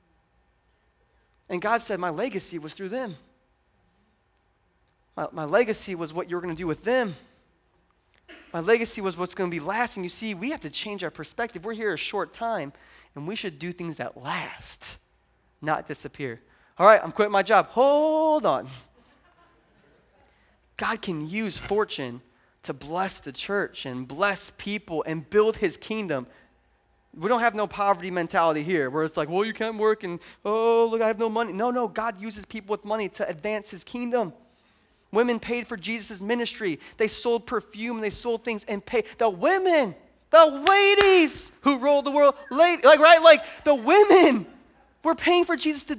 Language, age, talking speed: English, 20-39, 180 wpm